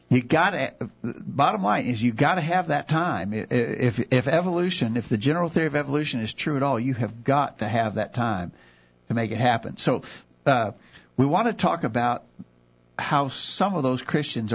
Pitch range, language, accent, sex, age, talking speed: 105-140 Hz, English, American, male, 50-69, 200 wpm